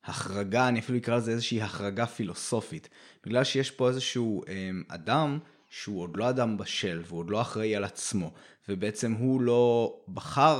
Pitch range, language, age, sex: 105-130 Hz, Hebrew, 20-39, male